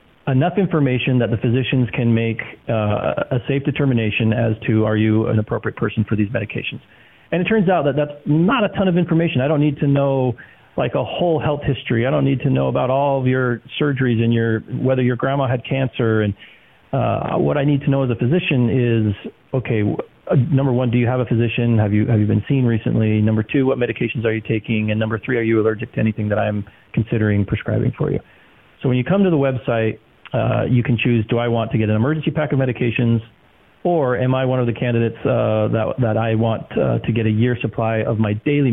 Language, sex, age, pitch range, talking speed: English, male, 40-59, 110-135 Hz, 230 wpm